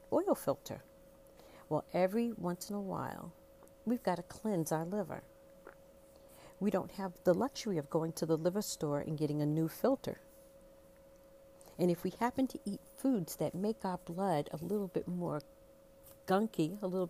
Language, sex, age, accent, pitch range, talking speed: English, female, 50-69, American, 155-220 Hz, 170 wpm